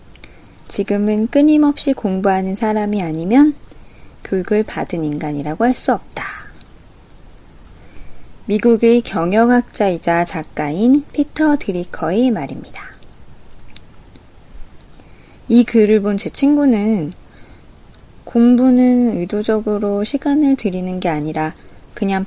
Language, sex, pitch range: Korean, female, 170-240 Hz